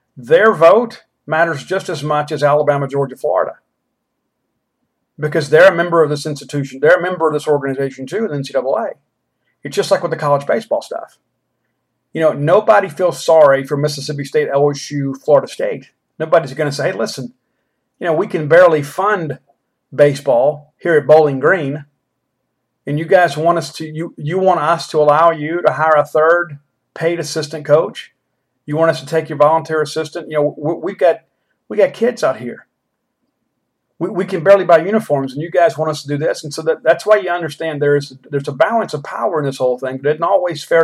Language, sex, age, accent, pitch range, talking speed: English, male, 50-69, American, 140-170 Hz, 200 wpm